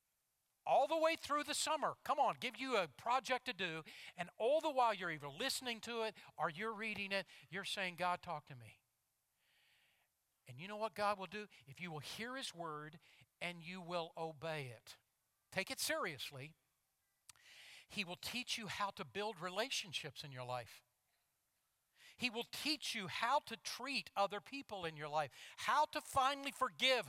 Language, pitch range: English, 150-220 Hz